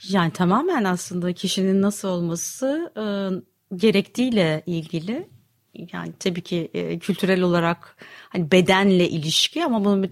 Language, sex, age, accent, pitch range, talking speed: Turkish, female, 30-49, native, 170-215 Hz, 125 wpm